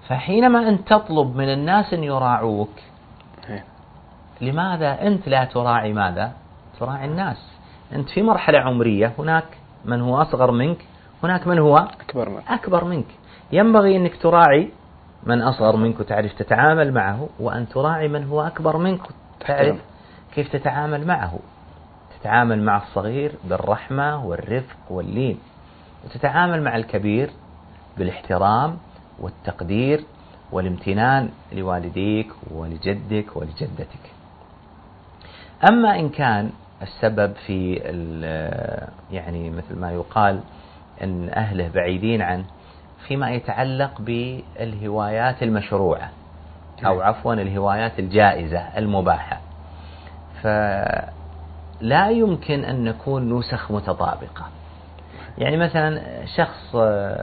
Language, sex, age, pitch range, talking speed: Arabic, male, 40-59, 90-140 Hz, 100 wpm